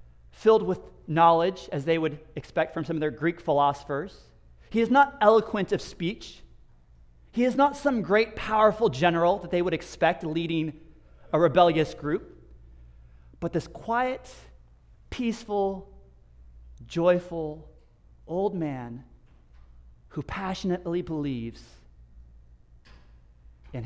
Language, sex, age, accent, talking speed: English, male, 40-59, American, 115 wpm